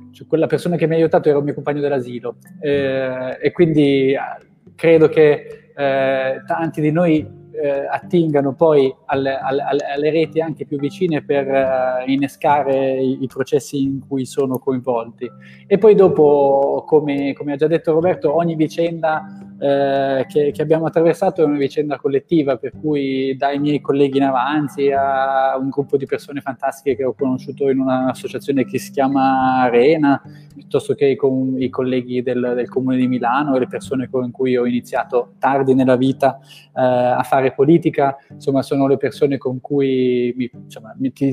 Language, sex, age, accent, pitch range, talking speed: Italian, male, 20-39, native, 130-155 Hz, 160 wpm